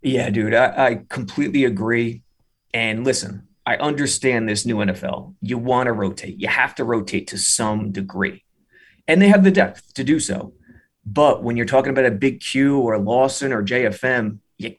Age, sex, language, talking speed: 30-49, male, English, 185 wpm